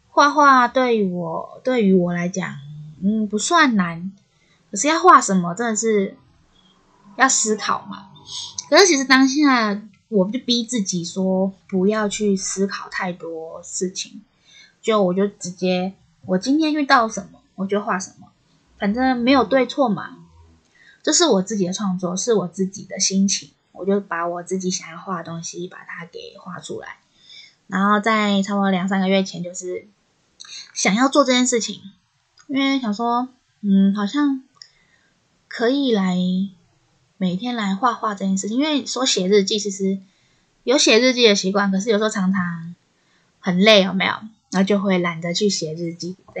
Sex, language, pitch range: female, Chinese, 185-225 Hz